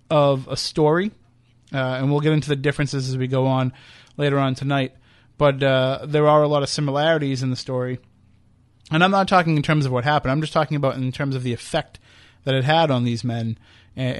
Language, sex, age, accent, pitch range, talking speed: English, male, 30-49, American, 125-150 Hz, 225 wpm